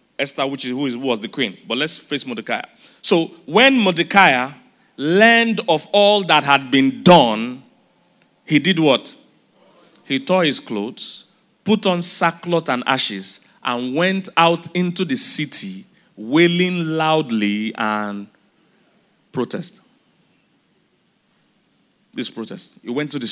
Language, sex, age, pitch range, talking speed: English, male, 30-49, 155-220 Hz, 120 wpm